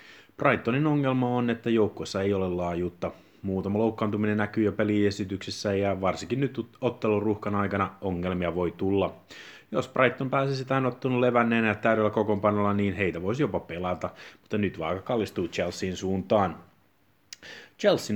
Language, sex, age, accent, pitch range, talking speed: Finnish, male, 30-49, native, 95-110 Hz, 140 wpm